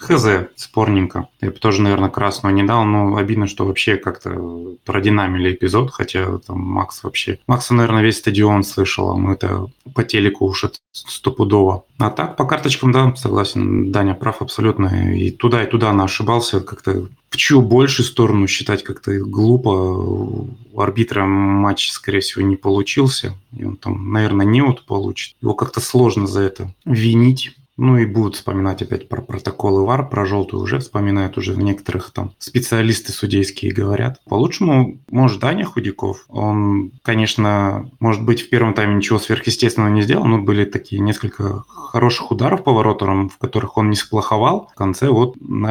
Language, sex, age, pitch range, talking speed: Russian, male, 20-39, 100-120 Hz, 165 wpm